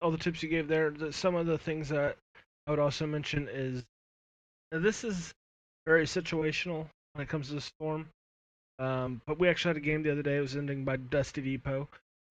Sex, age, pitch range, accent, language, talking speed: male, 20-39, 130-155 Hz, American, English, 210 wpm